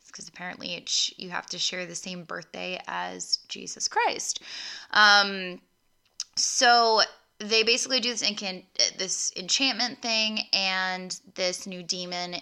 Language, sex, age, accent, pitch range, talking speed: English, female, 10-29, American, 170-195 Hz, 145 wpm